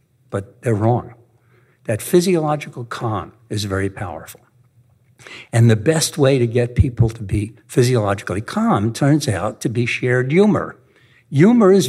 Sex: male